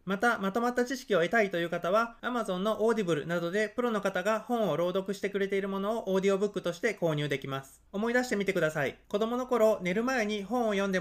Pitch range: 185-225 Hz